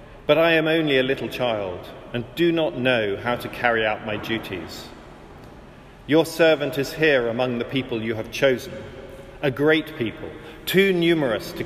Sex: male